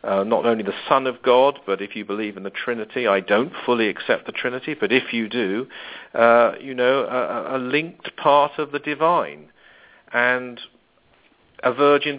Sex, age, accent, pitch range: male, 50-69, British, 110-150 Hz